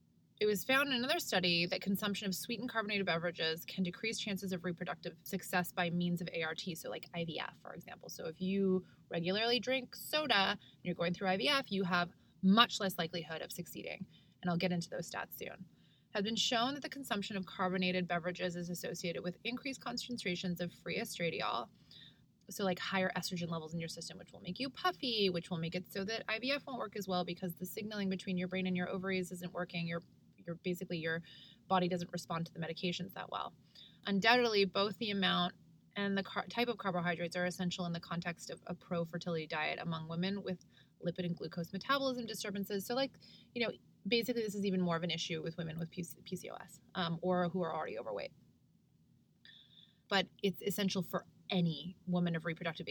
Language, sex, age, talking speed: English, female, 20-39, 195 wpm